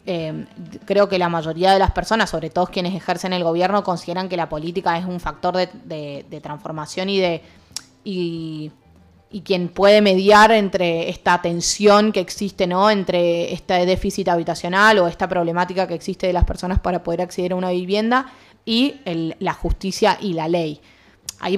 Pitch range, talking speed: 170-195 Hz, 180 wpm